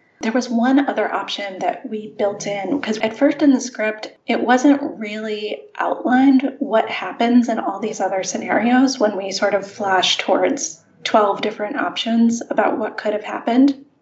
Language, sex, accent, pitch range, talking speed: English, female, American, 210-255 Hz, 170 wpm